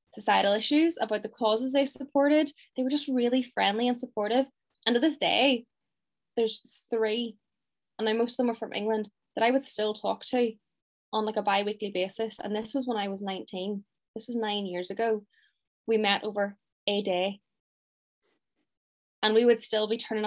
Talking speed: 185 wpm